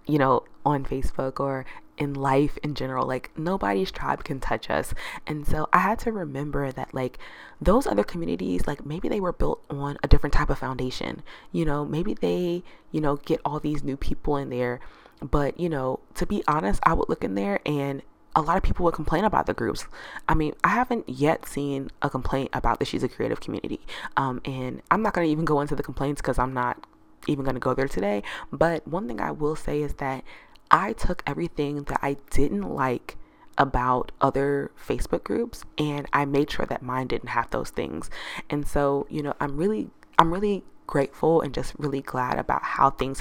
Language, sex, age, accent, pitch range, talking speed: English, female, 20-39, American, 130-155 Hz, 210 wpm